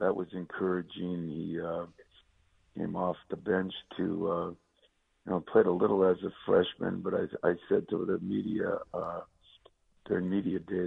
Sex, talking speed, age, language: male, 165 wpm, 60-79, English